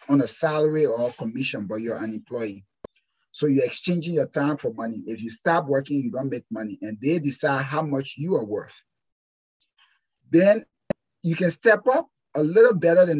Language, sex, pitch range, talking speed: English, male, 135-170 Hz, 185 wpm